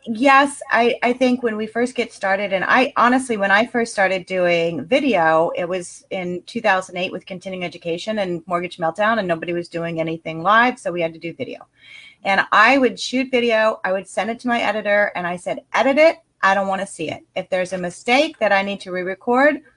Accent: American